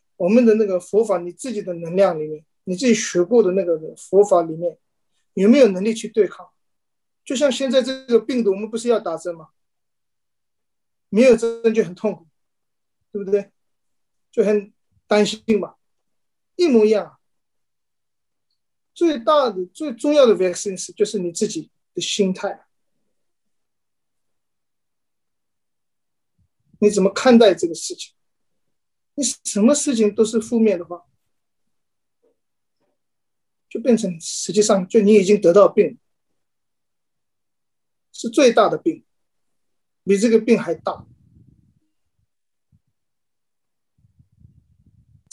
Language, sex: Chinese, male